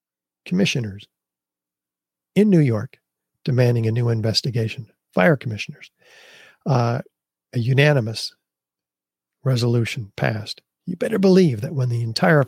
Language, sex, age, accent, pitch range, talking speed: English, male, 50-69, American, 110-155 Hz, 105 wpm